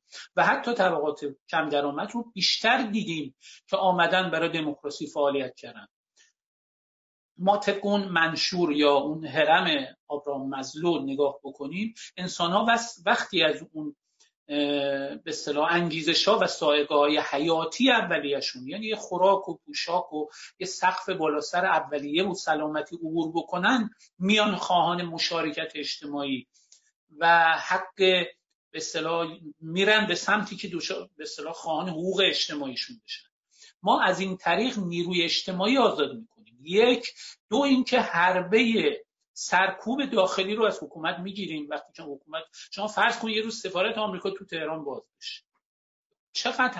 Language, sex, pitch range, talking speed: Persian, male, 155-210 Hz, 125 wpm